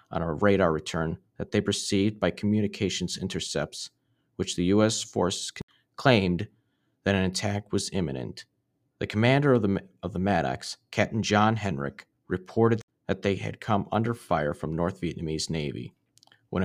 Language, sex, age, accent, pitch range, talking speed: English, male, 40-59, American, 85-105 Hz, 150 wpm